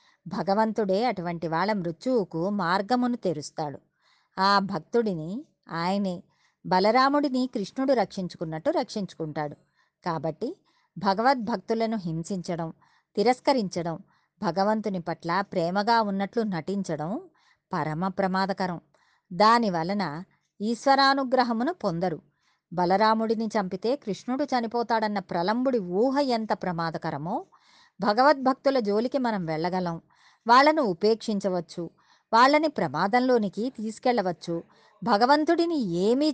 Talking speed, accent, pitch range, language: 75 wpm, native, 175-240 Hz, Telugu